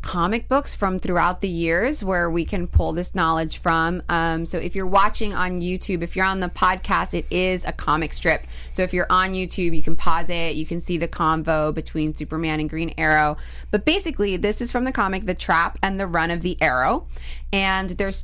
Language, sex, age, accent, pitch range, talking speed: English, female, 20-39, American, 150-185 Hz, 215 wpm